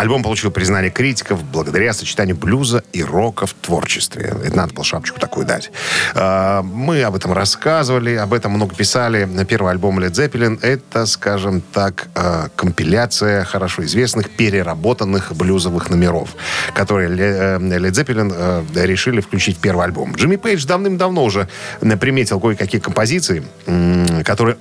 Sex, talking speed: male, 130 wpm